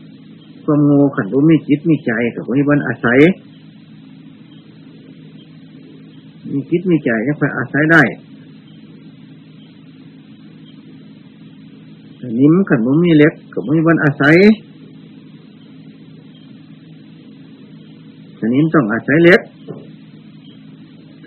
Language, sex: Thai, male